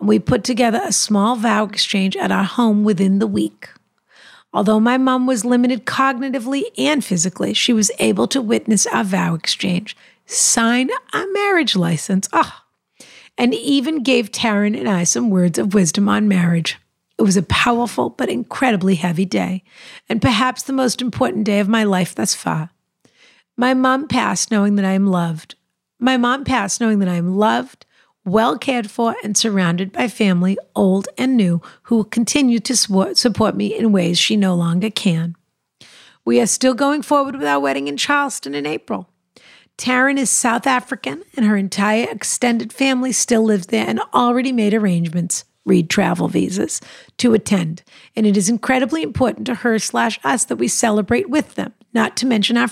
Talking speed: 175 wpm